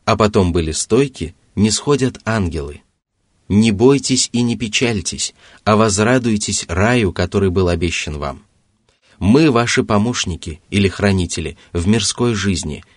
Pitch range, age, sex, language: 90-110 Hz, 30-49, male, Russian